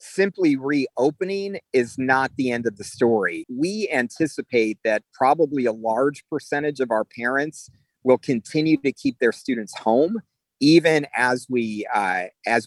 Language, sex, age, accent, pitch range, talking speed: English, male, 40-59, American, 115-140 Hz, 145 wpm